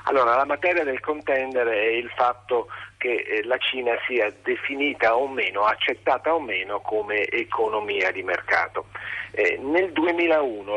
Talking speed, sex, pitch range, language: 145 wpm, male, 105-160 Hz, Italian